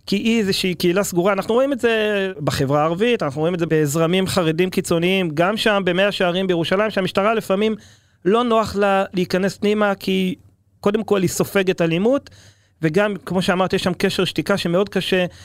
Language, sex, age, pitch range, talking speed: Hebrew, male, 30-49, 160-200 Hz, 175 wpm